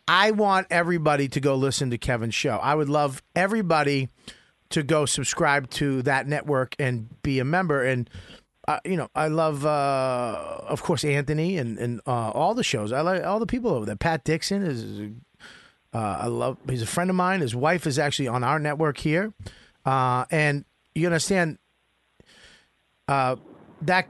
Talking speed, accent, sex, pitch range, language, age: 175 wpm, American, male, 135-170 Hz, English, 40-59